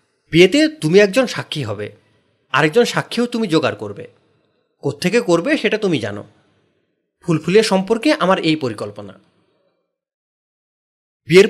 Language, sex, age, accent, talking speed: Bengali, male, 30-49, native, 115 wpm